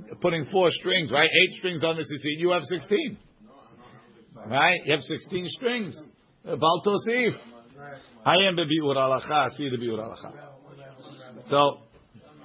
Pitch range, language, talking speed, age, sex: 130-170 Hz, English, 140 wpm, 50-69, male